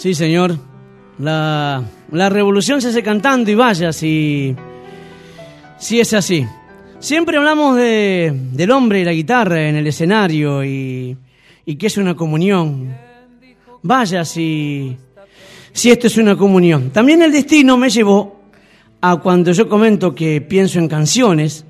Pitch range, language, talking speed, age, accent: 150-215 Hz, Spanish, 140 wpm, 40-59, Argentinian